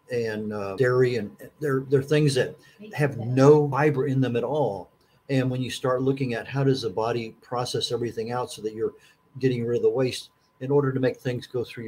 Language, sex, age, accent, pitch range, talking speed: English, male, 50-69, American, 110-145 Hz, 215 wpm